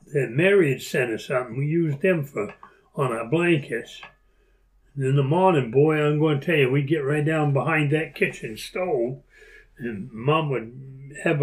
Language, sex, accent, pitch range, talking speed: English, male, American, 135-170 Hz, 180 wpm